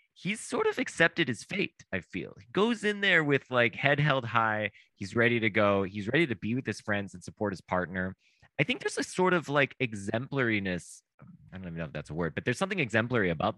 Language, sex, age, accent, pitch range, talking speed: English, male, 20-39, American, 100-140 Hz, 235 wpm